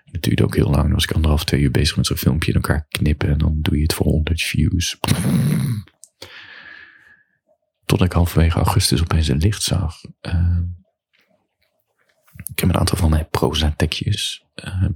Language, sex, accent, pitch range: Dutch, male, Dutch, 80-100 Hz